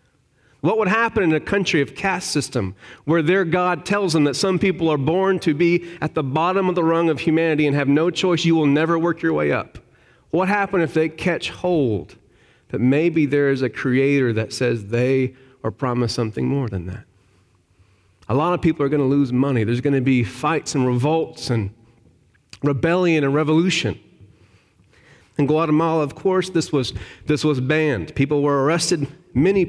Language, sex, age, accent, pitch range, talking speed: English, male, 40-59, American, 120-165 Hz, 190 wpm